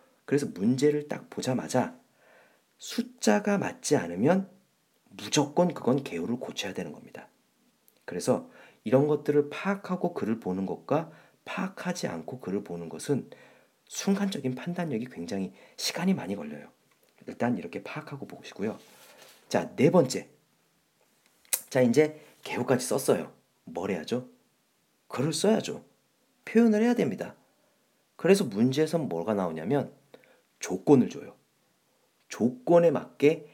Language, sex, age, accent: Korean, male, 40-59, native